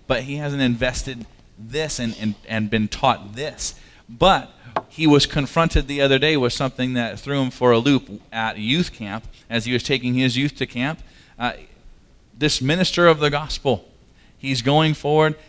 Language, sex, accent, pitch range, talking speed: English, male, American, 110-140 Hz, 175 wpm